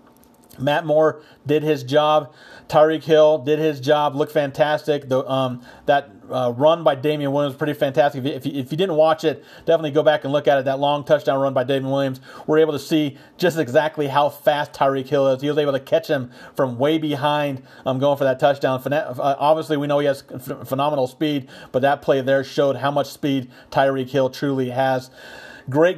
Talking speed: 205 wpm